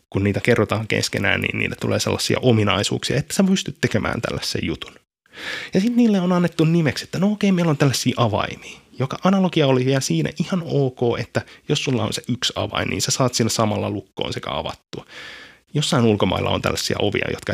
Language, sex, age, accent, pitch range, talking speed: Finnish, male, 20-39, native, 105-150 Hz, 190 wpm